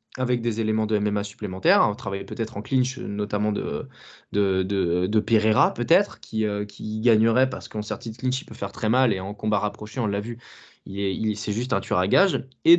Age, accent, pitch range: 20-39, French, 105-135 Hz